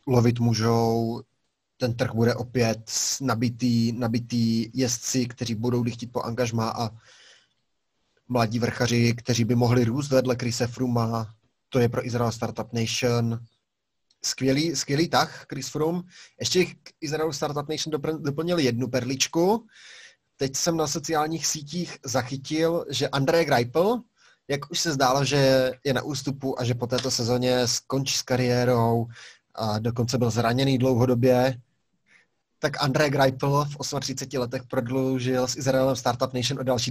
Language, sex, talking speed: Czech, male, 140 wpm